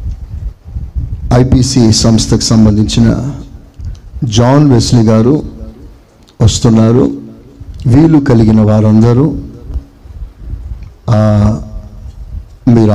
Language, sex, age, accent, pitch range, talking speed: Telugu, male, 50-69, native, 90-130 Hz, 50 wpm